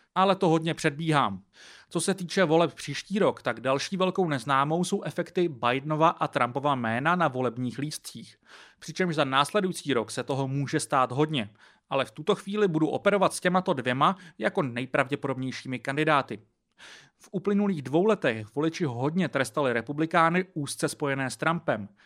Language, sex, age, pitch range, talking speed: English, male, 30-49, 140-180 Hz, 155 wpm